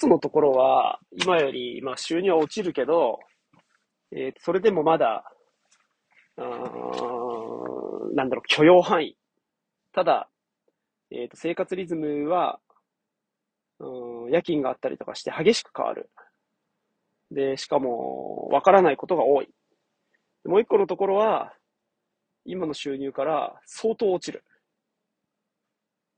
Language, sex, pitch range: Japanese, male, 135-200 Hz